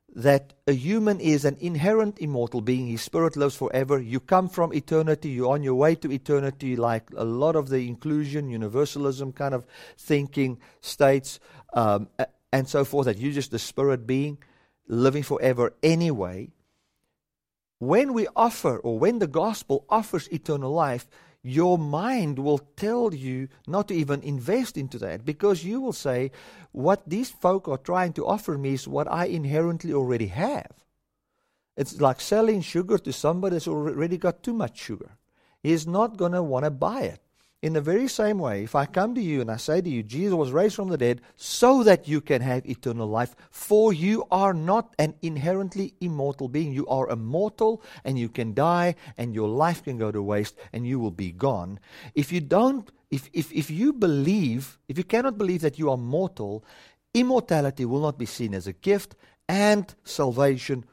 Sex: male